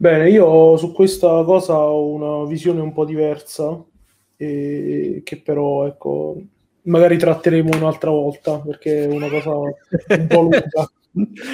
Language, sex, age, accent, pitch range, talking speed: Italian, male, 30-49, native, 150-175 Hz, 135 wpm